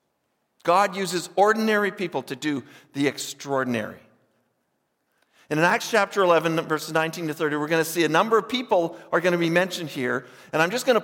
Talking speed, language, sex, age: 195 wpm, English, male, 50-69